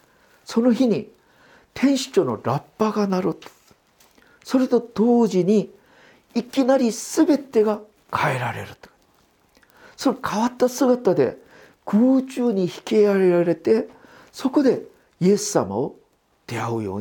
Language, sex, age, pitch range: Japanese, male, 50-69, 145-230 Hz